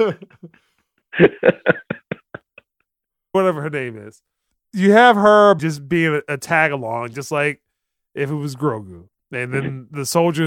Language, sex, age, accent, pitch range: English, male, 20-39, American, 140-190 Hz